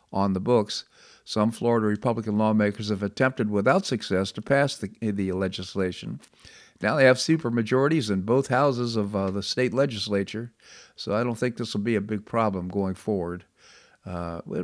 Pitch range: 105-125 Hz